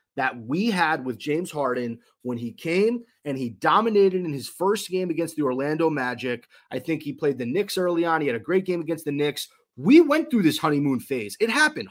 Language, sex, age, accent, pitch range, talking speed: English, male, 30-49, American, 145-205 Hz, 220 wpm